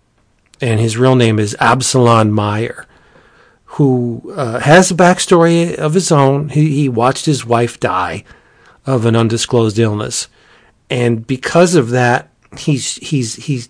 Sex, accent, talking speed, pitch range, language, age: male, American, 130 wpm, 115-140 Hz, English, 40-59